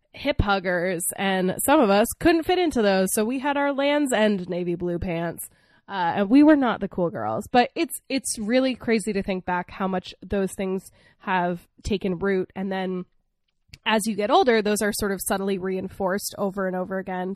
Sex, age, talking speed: female, 20-39, 200 wpm